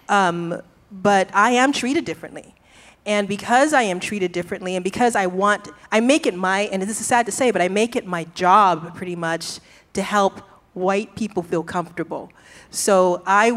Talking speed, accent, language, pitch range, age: 185 wpm, American, English, 175-210 Hz, 30-49